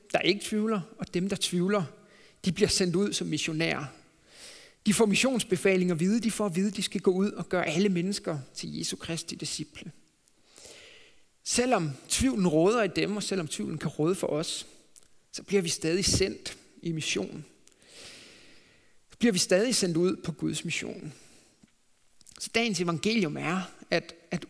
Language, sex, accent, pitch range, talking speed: Danish, male, native, 170-210 Hz, 170 wpm